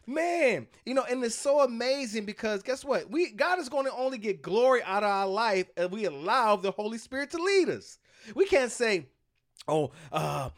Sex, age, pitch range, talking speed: male, 30-49, 180-250 Hz, 205 wpm